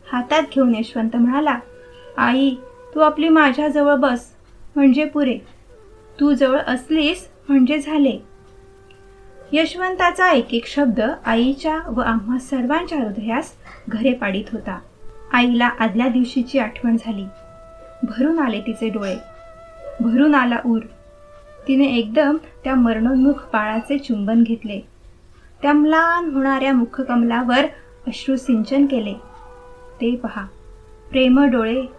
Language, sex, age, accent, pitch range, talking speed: Marathi, female, 20-39, native, 225-285 Hz, 105 wpm